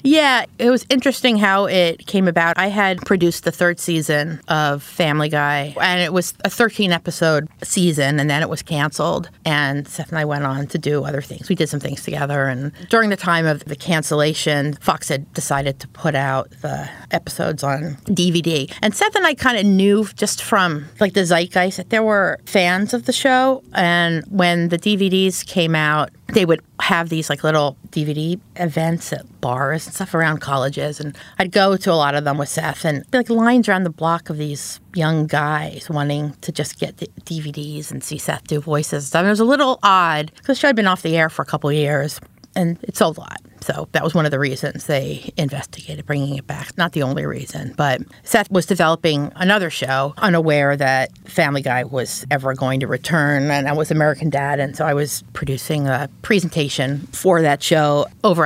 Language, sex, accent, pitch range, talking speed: English, female, American, 145-185 Hz, 205 wpm